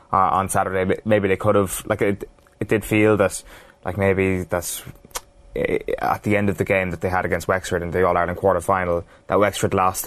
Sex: male